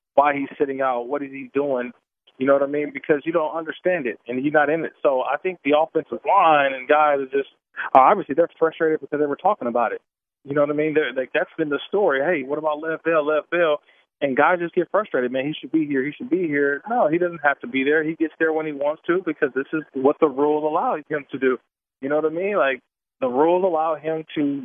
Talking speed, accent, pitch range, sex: 265 wpm, American, 140-165 Hz, male